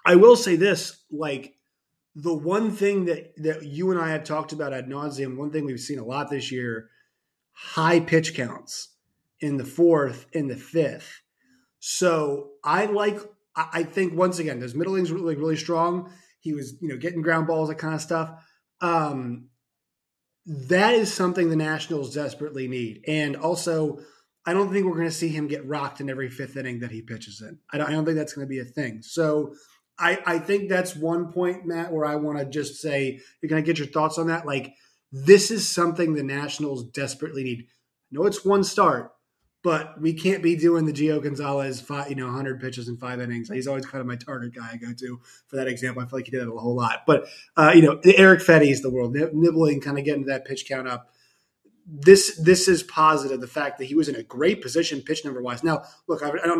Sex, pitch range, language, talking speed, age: male, 135-170 Hz, English, 225 wpm, 20-39